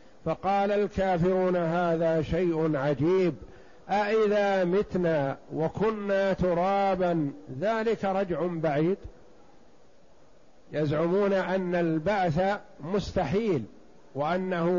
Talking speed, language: 70 wpm, Arabic